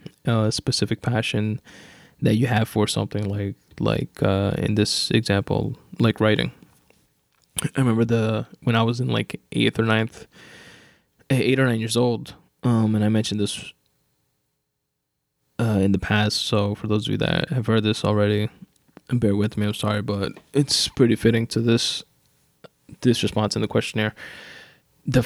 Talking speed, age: 165 wpm, 10-29